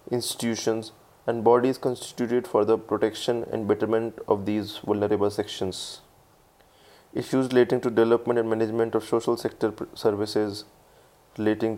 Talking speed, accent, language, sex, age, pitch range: 120 wpm, Indian, English, male, 20-39, 105-115 Hz